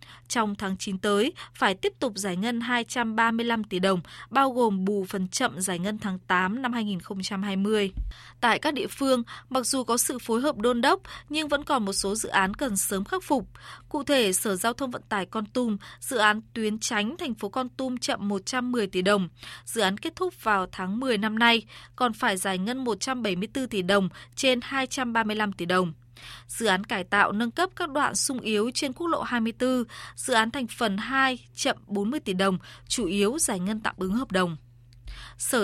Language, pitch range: Vietnamese, 195-255 Hz